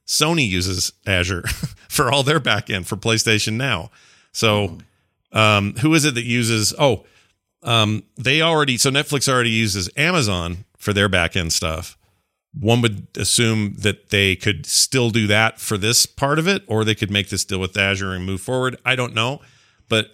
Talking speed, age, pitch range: 175 wpm, 40-59, 95-135 Hz